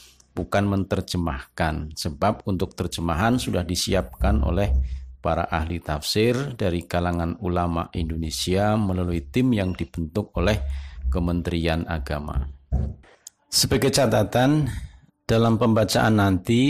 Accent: native